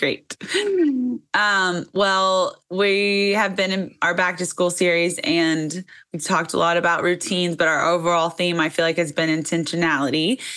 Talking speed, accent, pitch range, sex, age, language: 165 wpm, American, 160-185 Hz, female, 10-29, English